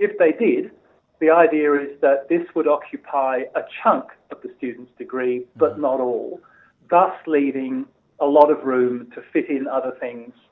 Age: 40-59